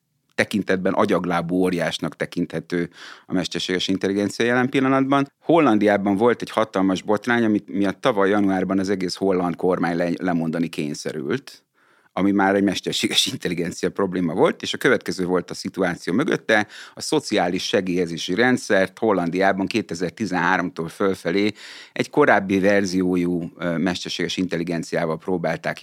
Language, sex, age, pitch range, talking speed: Hungarian, male, 30-49, 90-110 Hz, 120 wpm